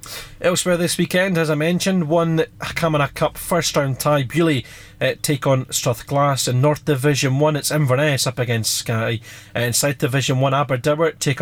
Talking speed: 170 wpm